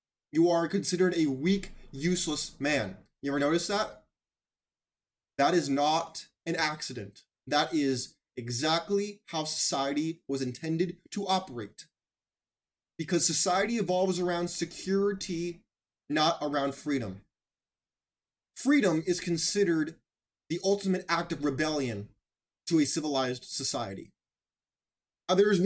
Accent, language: American, English